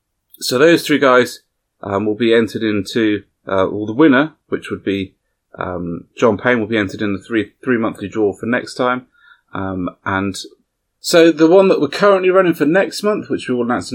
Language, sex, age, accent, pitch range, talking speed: English, male, 30-49, British, 100-140 Hz, 205 wpm